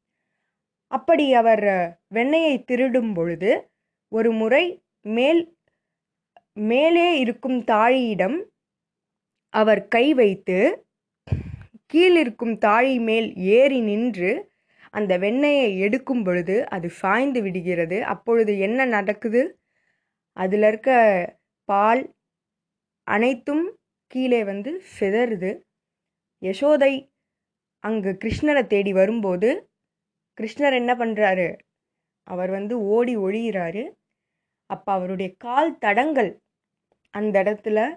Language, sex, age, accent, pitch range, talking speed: Tamil, female, 20-39, native, 190-250 Hz, 85 wpm